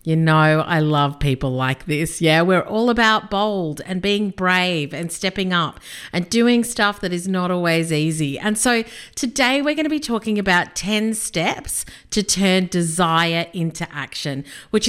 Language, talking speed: English, 175 wpm